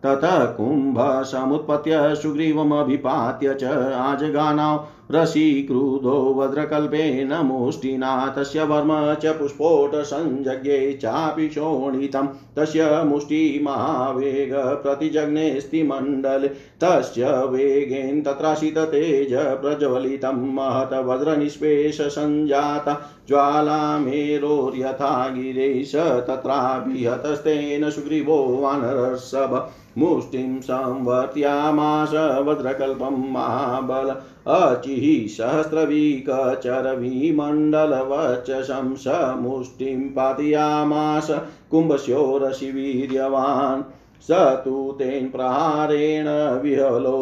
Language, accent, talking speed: Hindi, native, 60 wpm